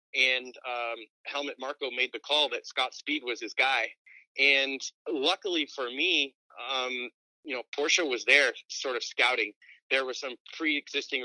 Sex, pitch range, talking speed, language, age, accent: male, 125-165 Hz, 160 wpm, English, 30-49, American